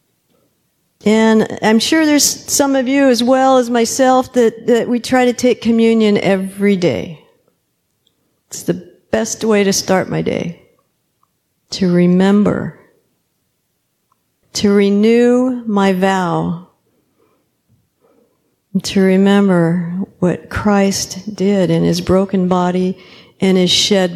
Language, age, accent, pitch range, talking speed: English, 50-69, American, 185-235 Hz, 115 wpm